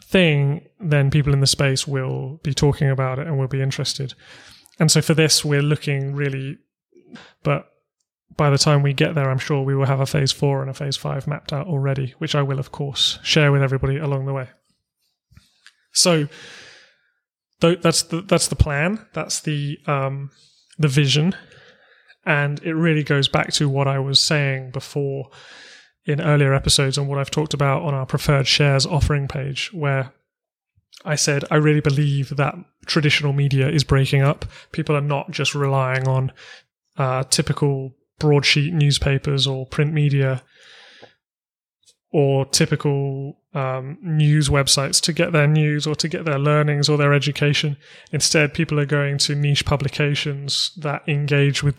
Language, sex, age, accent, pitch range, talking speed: English, male, 30-49, British, 135-150 Hz, 165 wpm